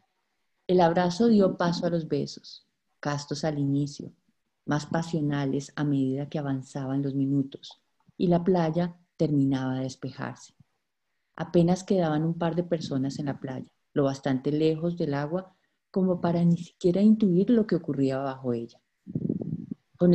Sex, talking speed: female, 145 wpm